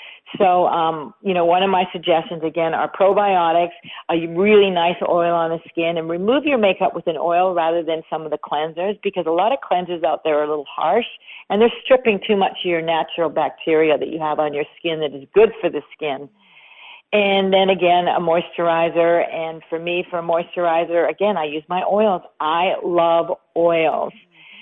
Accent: American